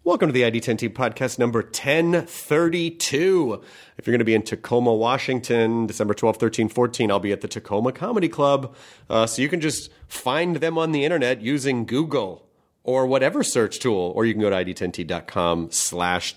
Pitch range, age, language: 110-160 Hz, 30-49, English